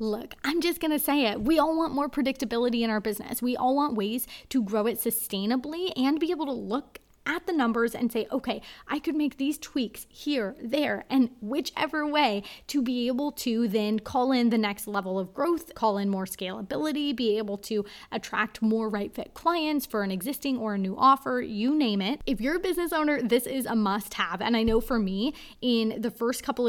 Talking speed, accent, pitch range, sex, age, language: 220 wpm, American, 210-280 Hz, female, 20-39, English